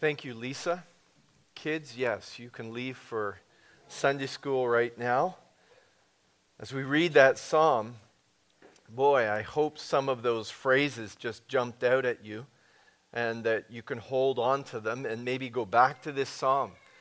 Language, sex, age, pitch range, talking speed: English, male, 40-59, 115-135 Hz, 160 wpm